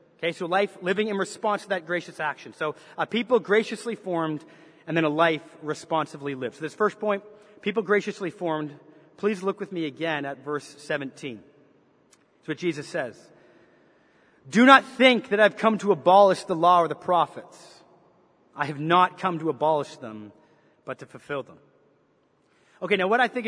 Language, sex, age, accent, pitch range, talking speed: English, male, 30-49, American, 165-210 Hz, 175 wpm